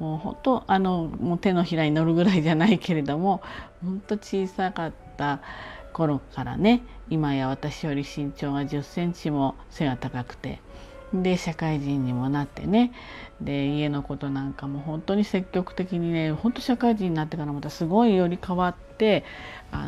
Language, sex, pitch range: Japanese, female, 145-195 Hz